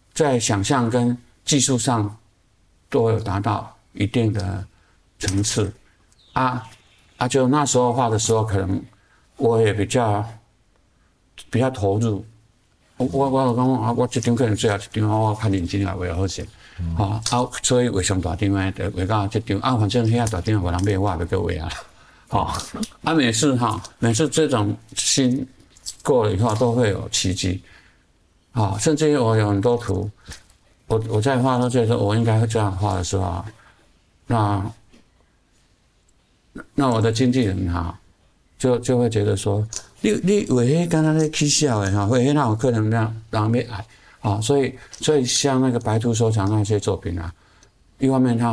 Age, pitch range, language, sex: 60-79, 100-125 Hz, Chinese, male